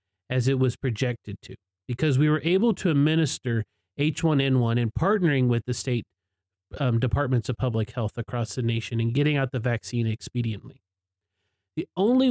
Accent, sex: American, male